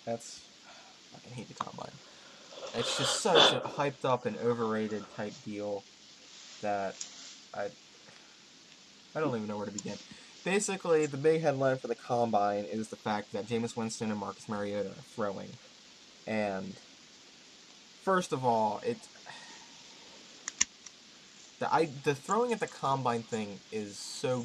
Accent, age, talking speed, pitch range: American, 20-39, 140 wpm, 110-150 Hz